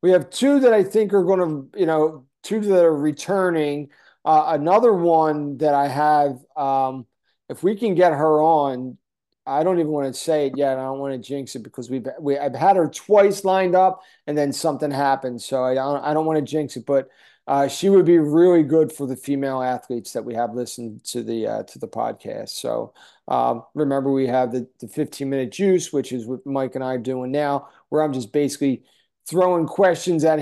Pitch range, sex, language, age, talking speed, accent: 135-170 Hz, male, English, 40-59, 215 wpm, American